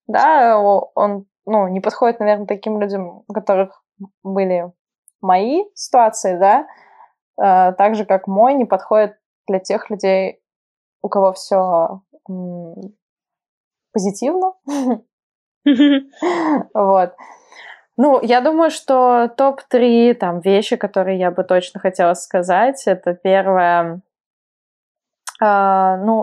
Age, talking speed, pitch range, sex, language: 20-39, 105 wpm, 190-230 Hz, female, Russian